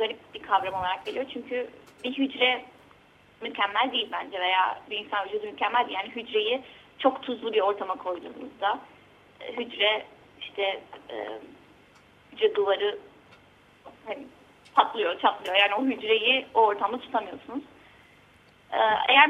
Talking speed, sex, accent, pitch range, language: 115 wpm, female, native, 215-295 Hz, Turkish